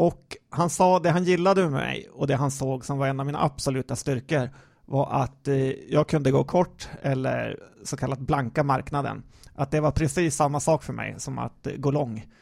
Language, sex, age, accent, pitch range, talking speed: Swedish, male, 30-49, native, 135-155 Hz, 205 wpm